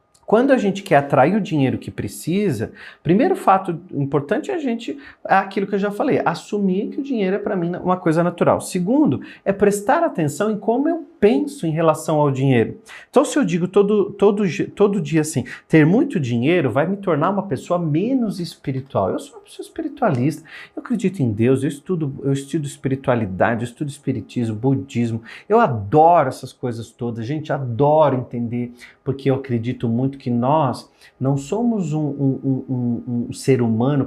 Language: Portuguese